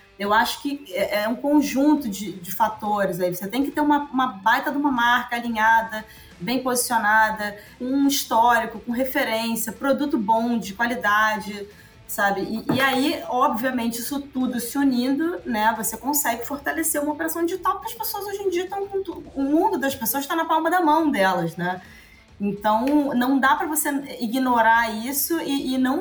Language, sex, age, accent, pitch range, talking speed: Portuguese, female, 20-39, Brazilian, 230-300 Hz, 180 wpm